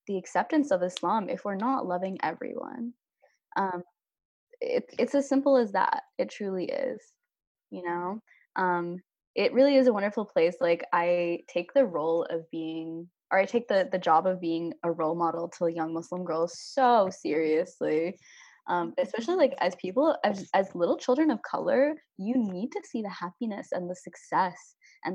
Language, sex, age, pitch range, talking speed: English, female, 20-39, 175-235 Hz, 175 wpm